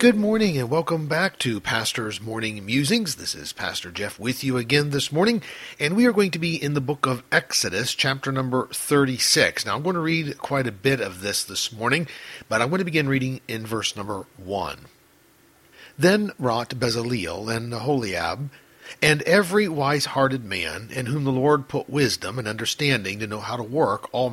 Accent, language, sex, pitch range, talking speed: American, English, male, 115-160 Hz, 190 wpm